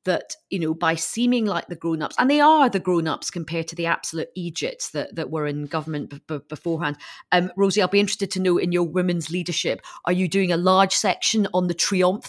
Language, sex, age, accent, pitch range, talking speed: English, female, 30-49, British, 165-200 Hz, 235 wpm